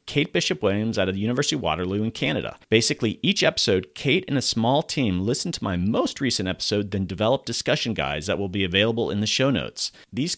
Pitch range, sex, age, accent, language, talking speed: 95-125 Hz, male, 40-59, American, English, 215 wpm